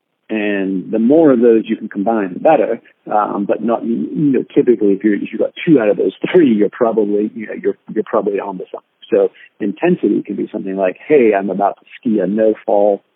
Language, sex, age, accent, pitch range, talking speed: English, male, 40-59, American, 100-125 Hz, 225 wpm